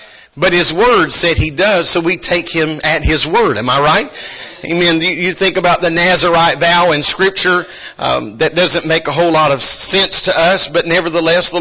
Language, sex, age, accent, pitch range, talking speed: English, male, 50-69, American, 155-185 Hz, 200 wpm